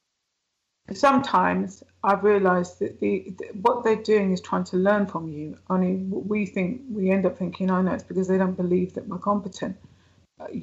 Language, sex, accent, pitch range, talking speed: English, female, British, 170-195 Hz, 185 wpm